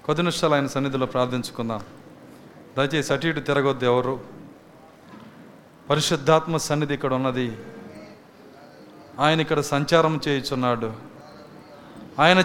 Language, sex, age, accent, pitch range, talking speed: Telugu, male, 30-49, native, 145-210 Hz, 85 wpm